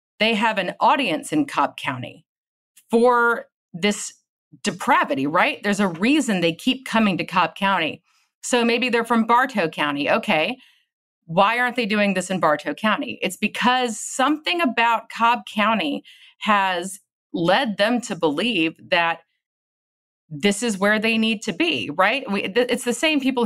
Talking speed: 150 wpm